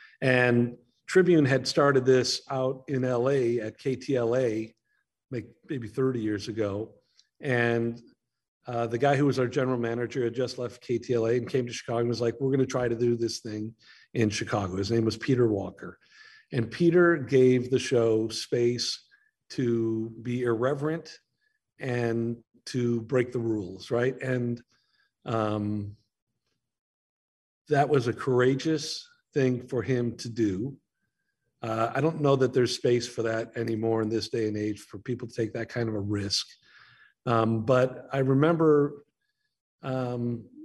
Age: 50-69